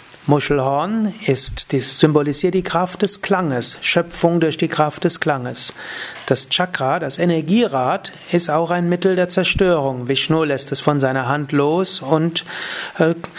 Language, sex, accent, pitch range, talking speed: German, male, German, 145-185 Hz, 140 wpm